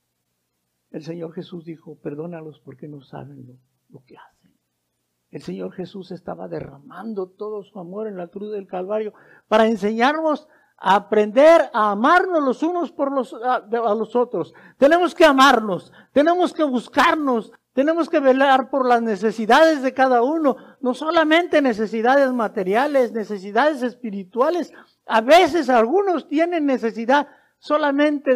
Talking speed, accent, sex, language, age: 140 wpm, Mexican, male, Spanish, 60-79